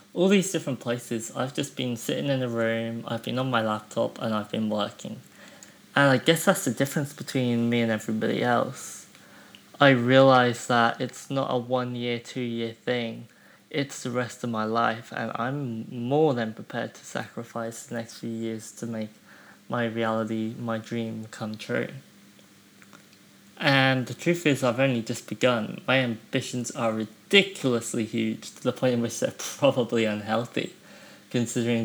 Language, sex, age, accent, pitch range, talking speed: English, male, 20-39, British, 115-130 Hz, 165 wpm